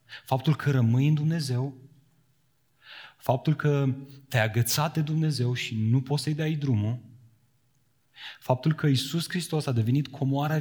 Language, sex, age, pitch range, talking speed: Romanian, male, 30-49, 125-160 Hz, 135 wpm